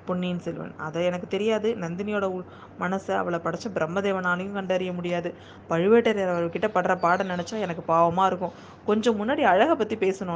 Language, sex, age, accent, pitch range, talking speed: Tamil, female, 20-39, native, 175-215 Hz, 145 wpm